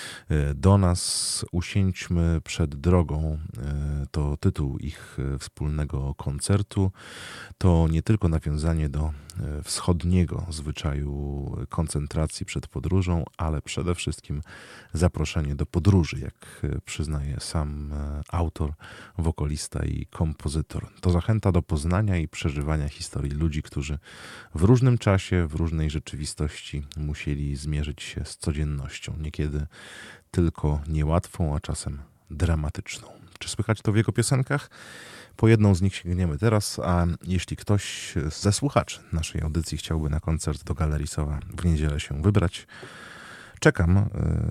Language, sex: Polish, male